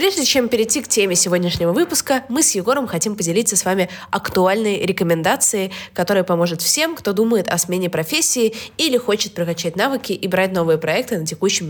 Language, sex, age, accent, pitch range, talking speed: Russian, female, 20-39, native, 180-235 Hz, 175 wpm